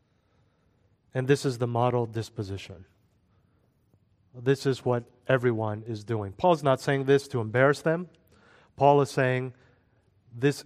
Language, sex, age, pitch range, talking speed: English, male, 40-59, 105-135 Hz, 130 wpm